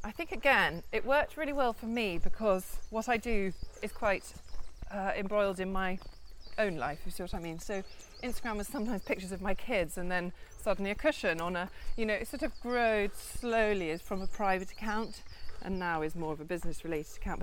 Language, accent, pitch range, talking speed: English, British, 180-245 Hz, 215 wpm